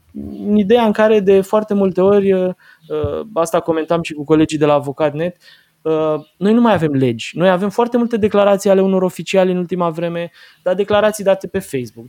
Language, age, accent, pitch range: Romanian, 20-39, native, 150-200 Hz